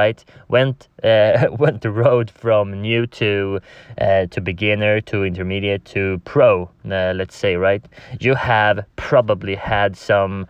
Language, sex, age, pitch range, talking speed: English, male, 20-39, 100-115 Hz, 145 wpm